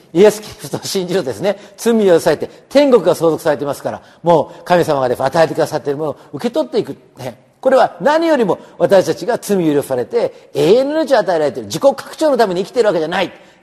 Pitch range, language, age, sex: 165-260 Hz, Japanese, 40-59, male